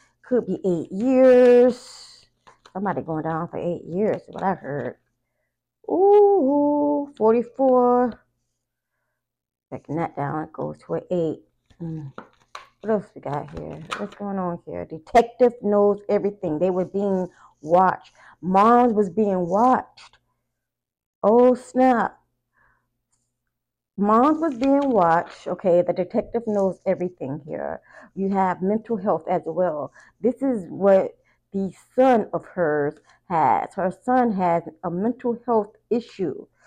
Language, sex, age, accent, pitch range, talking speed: English, female, 30-49, American, 180-245 Hz, 130 wpm